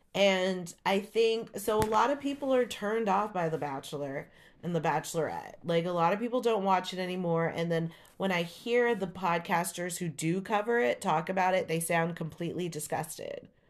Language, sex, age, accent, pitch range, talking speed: English, female, 30-49, American, 165-200 Hz, 195 wpm